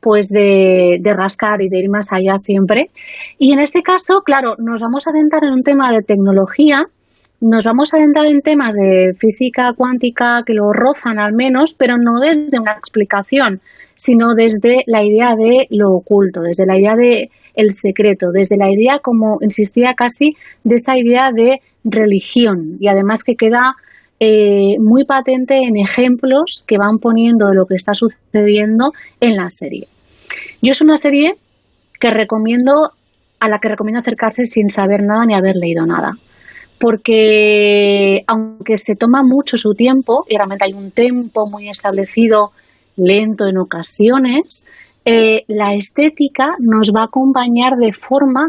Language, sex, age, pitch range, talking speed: Spanish, female, 30-49, 205-260 Hz, 160 wpm